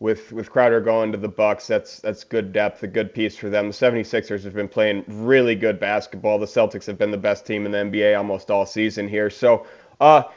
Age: 30-49